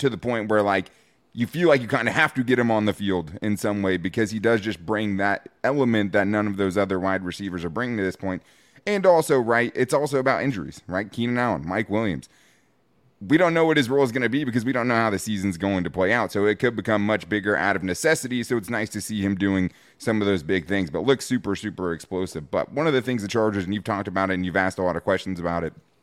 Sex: male